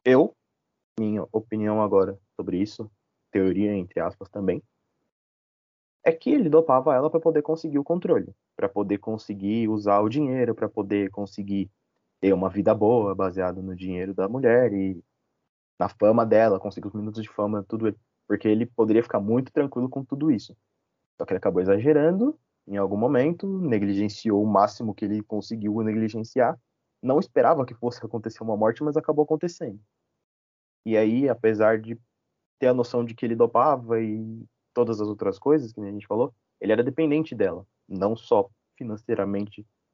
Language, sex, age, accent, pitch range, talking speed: Portuguese, male, 20-39, Brazilian, 105-135 Hz, 165 wpm